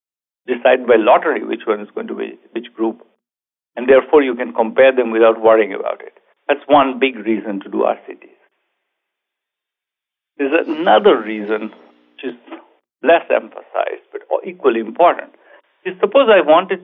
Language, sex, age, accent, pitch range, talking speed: English, male, 60-79, Indian, 120-195 Hz, 145 wpm